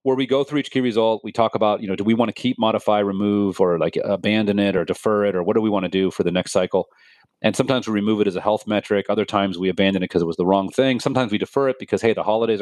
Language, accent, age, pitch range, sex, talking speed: English, American, 40-59, 105-140 Hz, male, 310 wpm